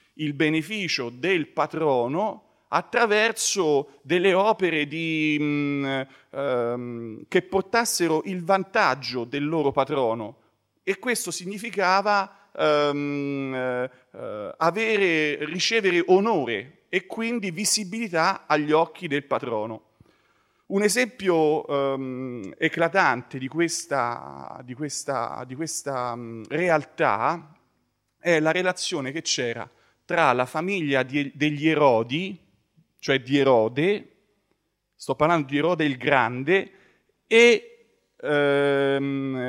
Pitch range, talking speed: 130-195 Hz, 80 wpm